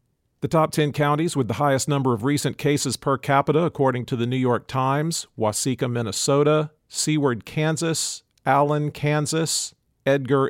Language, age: English, 50-69